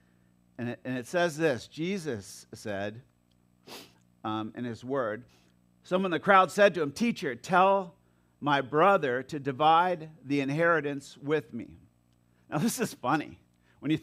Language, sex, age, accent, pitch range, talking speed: English, male, 50-69, American, 140-195 Hz, 140 wpm